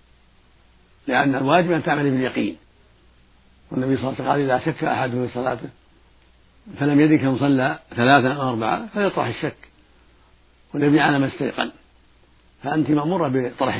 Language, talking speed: Arabic, 145 wpm